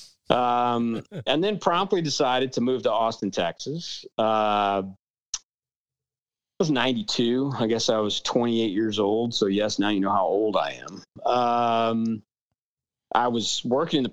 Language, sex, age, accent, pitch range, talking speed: English, male, 40-59, American, 105-145 Hz, 155 wpm